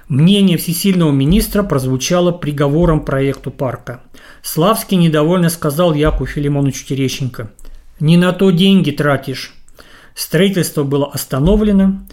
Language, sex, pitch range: Russian, male, 145-195 Hz